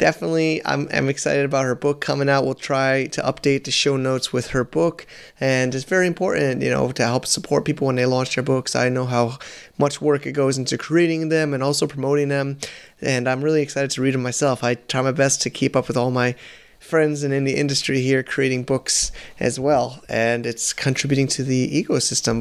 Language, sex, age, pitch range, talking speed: English, male, 20-39, 120-145 Hz, 220 wpm